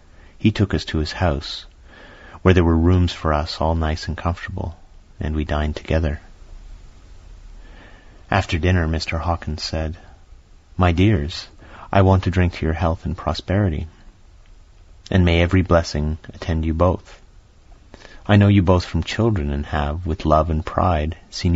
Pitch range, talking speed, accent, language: 80-95 Hz, 155 wpm, American, English